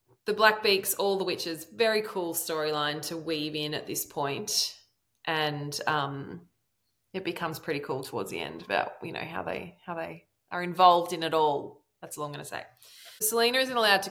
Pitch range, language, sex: 160-190 Hz, English, female